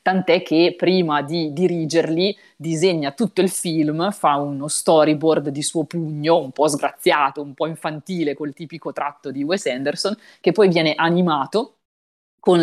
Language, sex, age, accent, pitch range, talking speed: Italian, female, 30-49, native, 145-170 Hz, 150 wpm